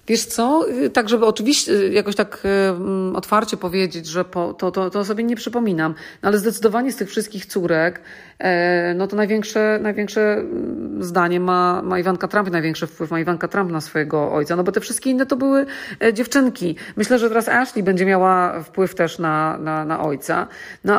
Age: 40-59